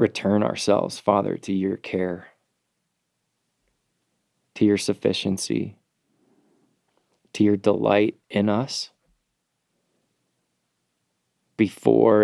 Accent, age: American, 20-39